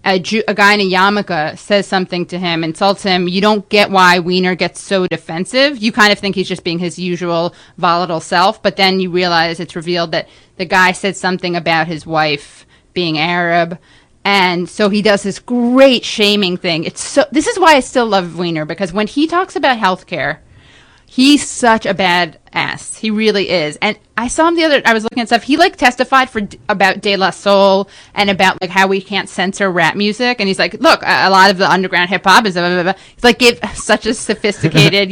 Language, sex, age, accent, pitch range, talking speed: English, female, 30-49, American, 175-210 Hz, 220 wpm